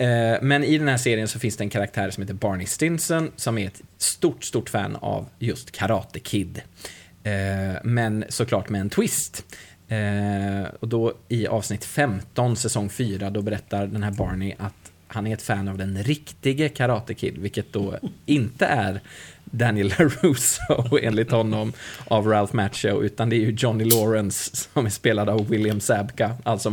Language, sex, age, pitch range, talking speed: Swedish, male, 20-39, 105-120 Hz, 170 wpm